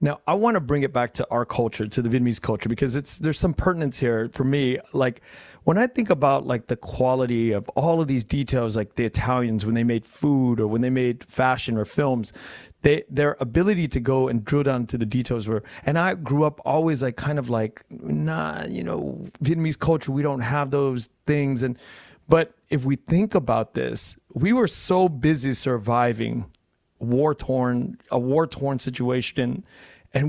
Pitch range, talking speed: 120-150 Hz, 190 wpm